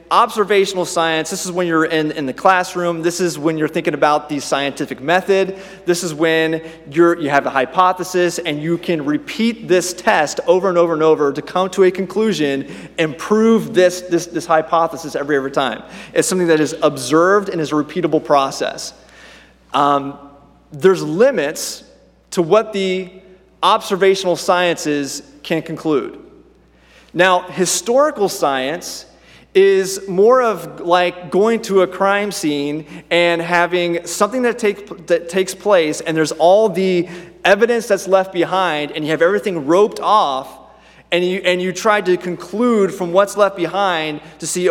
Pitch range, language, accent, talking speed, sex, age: 160-190 Hz, English, American, 160 wpm, male, 30-49